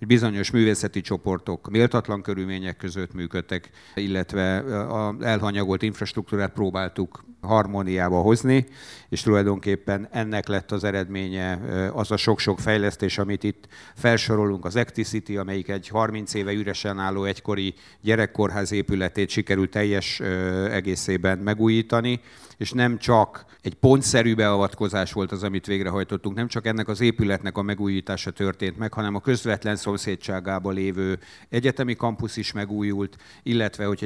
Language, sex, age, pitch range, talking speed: Hungarian, male, 50-69, 95-110 Hz, 130 wpm